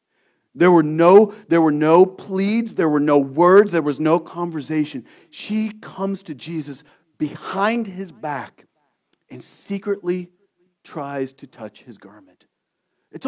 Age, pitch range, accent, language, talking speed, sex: 40-59, 150-200 Hz, American, English, 125 wpm, male